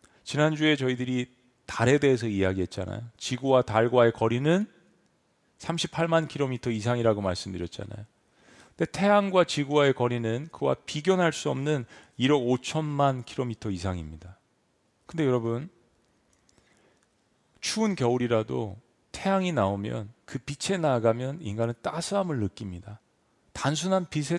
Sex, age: male, 40-59